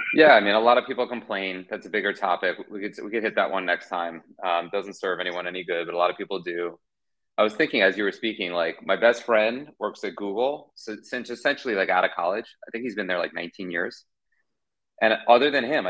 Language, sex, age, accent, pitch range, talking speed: English, male, 30-49, American, 90-115 Hz, 255 wpm